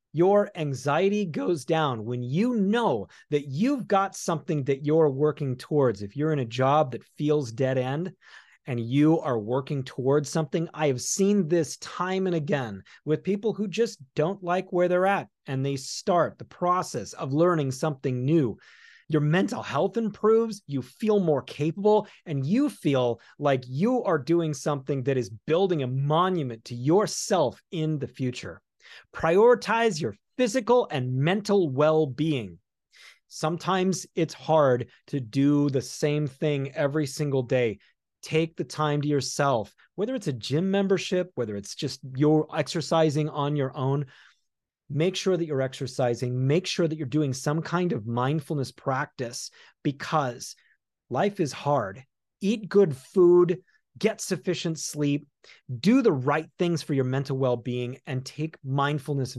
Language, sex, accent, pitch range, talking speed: English, male, American, 135-180 Hz, 155 wpm